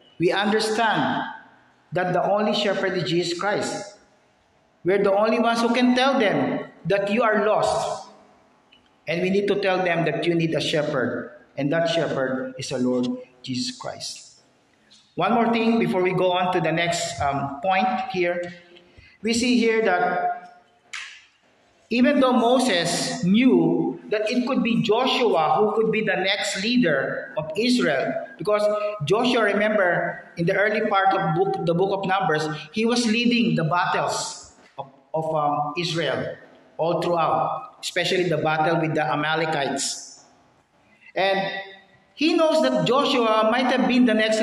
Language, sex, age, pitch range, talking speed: English, male, 50-69, 165-220 Hz, 155 wpm